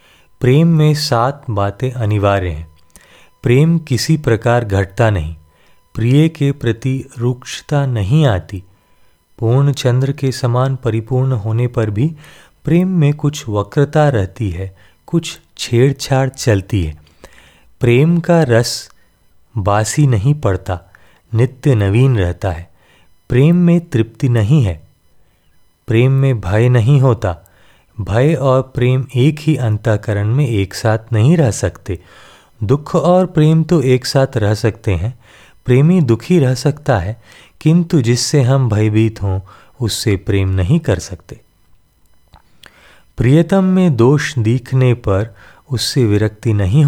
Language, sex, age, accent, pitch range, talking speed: Hindi, male, 30-49, native, 100-140 Hz, 125 wpm